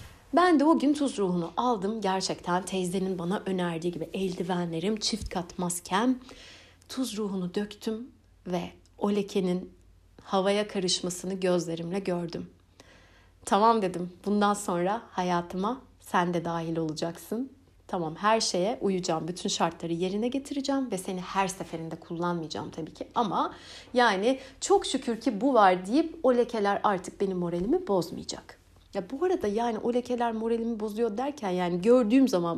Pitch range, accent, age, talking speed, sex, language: 180-250 Hz, native, 60-79, 140 wpm, female, Turkish